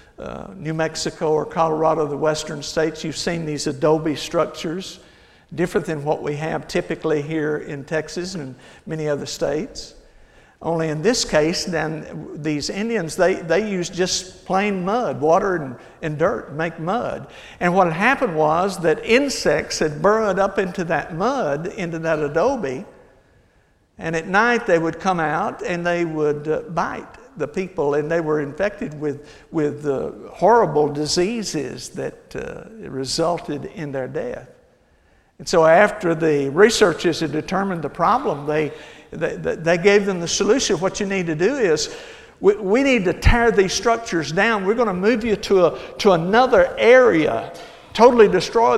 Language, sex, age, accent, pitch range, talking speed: English, male, 60-79, American, 155-205 Hz, 160 wpm